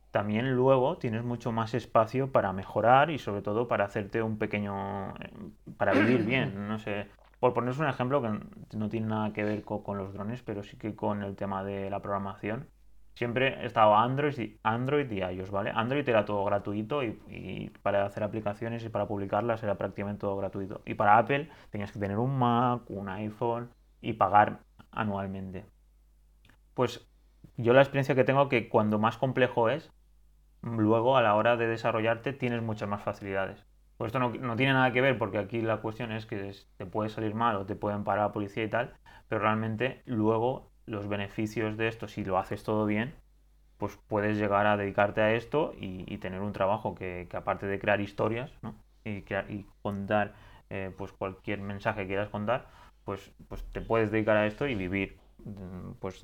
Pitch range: 100-115 Hz